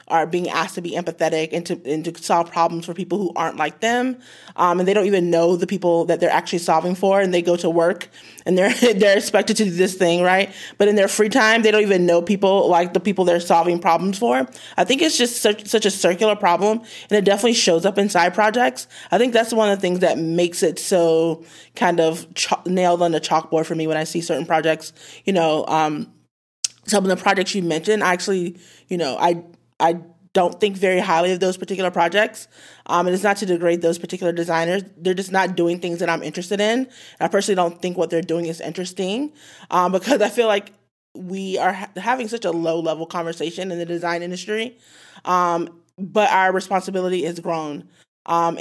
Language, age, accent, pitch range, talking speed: English, 20-39, American, 165-195 Hz, 215 wpm